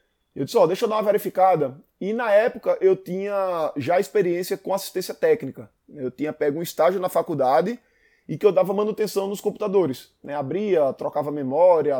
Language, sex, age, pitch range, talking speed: Portuguese, male, 20-39, 160-215 Hz, 185 wpm